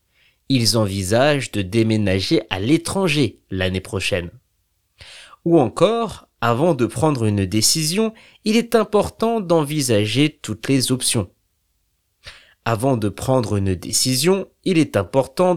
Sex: male